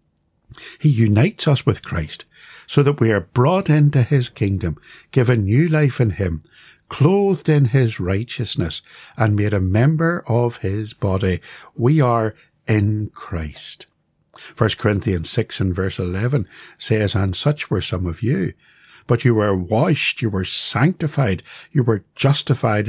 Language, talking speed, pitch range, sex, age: English, 145 wpm, 95-125 Hz, male, 60-79